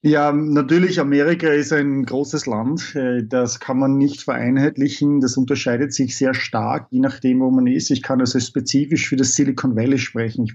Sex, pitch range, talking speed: male, 130-155 Hz, 180 wpm